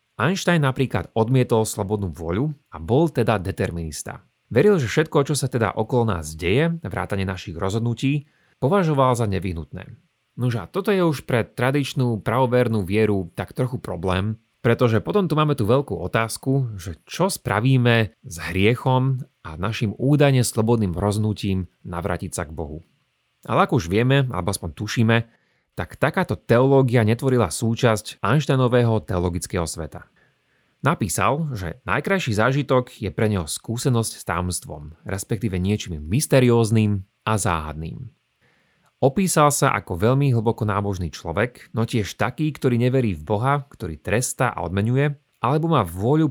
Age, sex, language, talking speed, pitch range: 30-49, male, Slovak, 140 wpm, 100-135 Hz